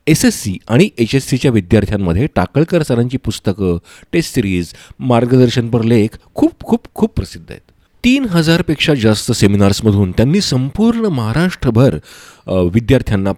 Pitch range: 105-150 Hz